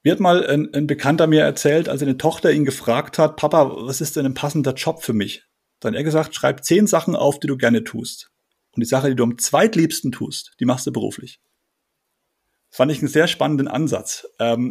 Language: German